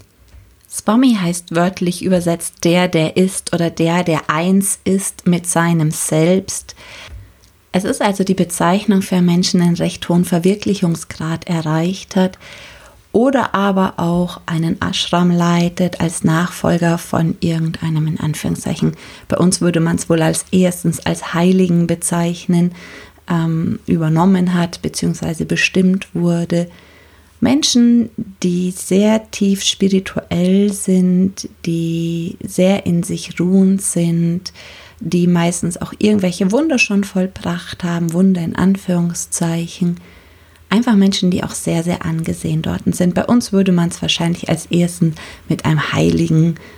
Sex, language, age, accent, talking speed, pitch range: female, German, 30-49, German, 130 wpm, 165-190 Hz